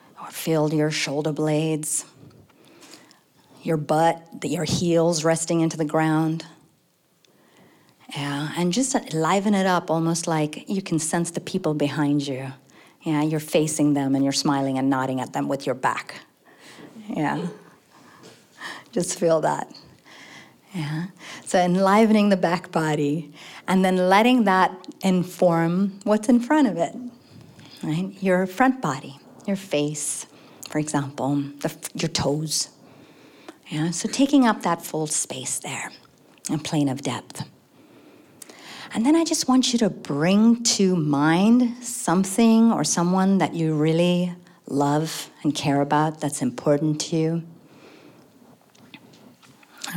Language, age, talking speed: English, 40-59, 130 wpm